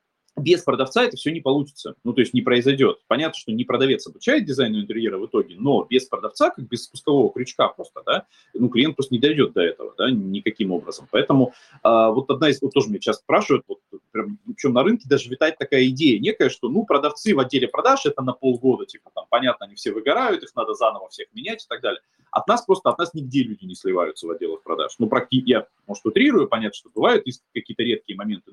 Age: 30-49